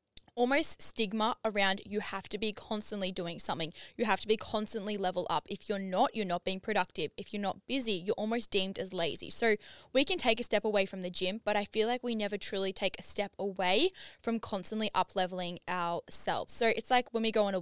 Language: English